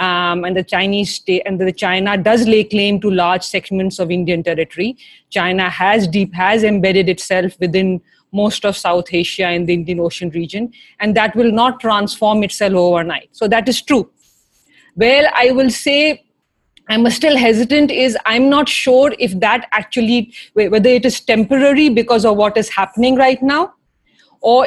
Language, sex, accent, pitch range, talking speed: English, female, Indian, 195-245 Hz, 170 wpm